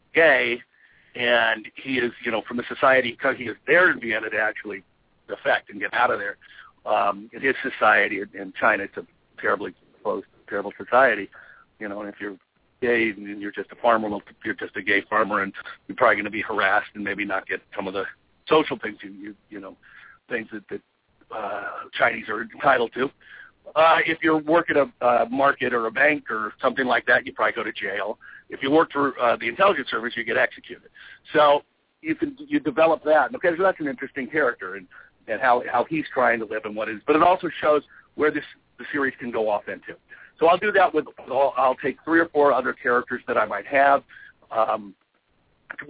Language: English